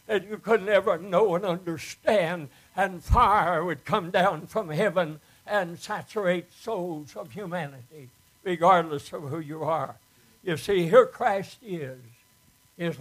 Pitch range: 140-195 Hz